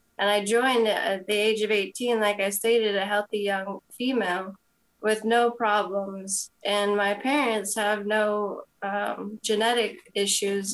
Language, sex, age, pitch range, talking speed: English, female, 20-39, 195-225 Hz, 145 wpm